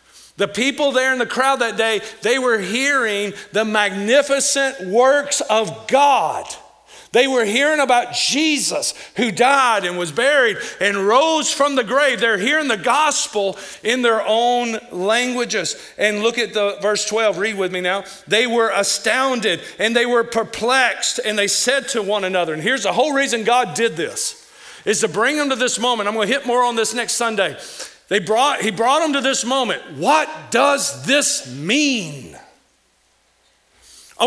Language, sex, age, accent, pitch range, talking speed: English, male, 50-69, American, 210-265 Hz, 170 wpm